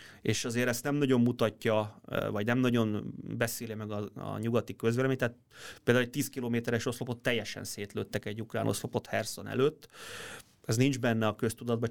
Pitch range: 110-130 Hz